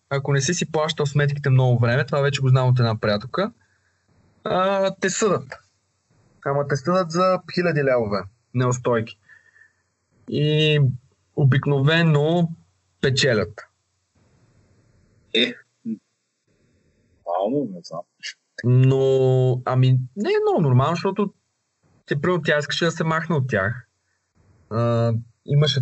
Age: 20-39